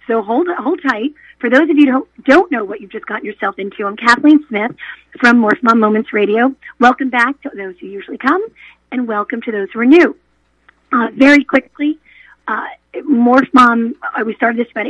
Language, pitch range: English, 210-270 Hz